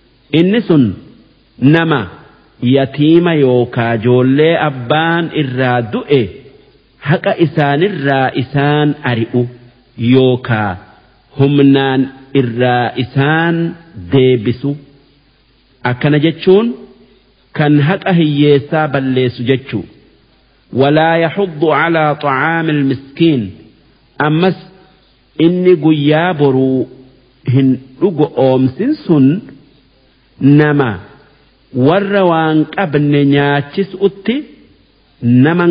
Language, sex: Arabic, male